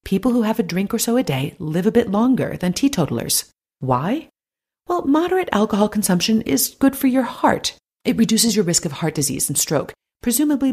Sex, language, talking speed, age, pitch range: female, English, 195 wpm, 40-59, 150-220 Hz